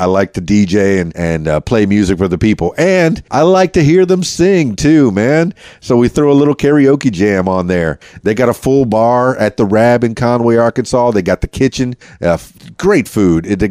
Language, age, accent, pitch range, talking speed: English, 40-59, American, 100-135 Hz, 220 wpm